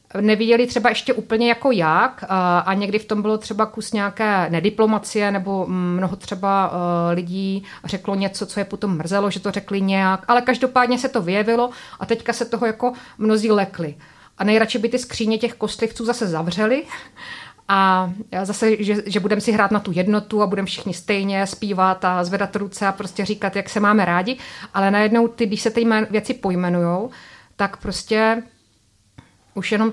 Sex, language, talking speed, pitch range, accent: female, Czech, 175 wpm, 180-215 Hz, native